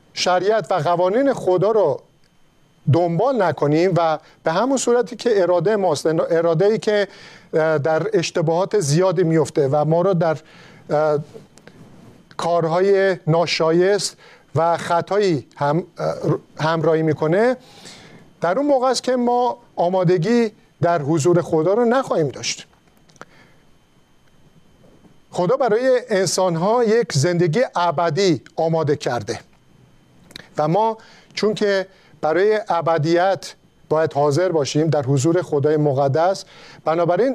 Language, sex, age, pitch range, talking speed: Persian, male, 50-69, 160-200 Hz, 105 wpm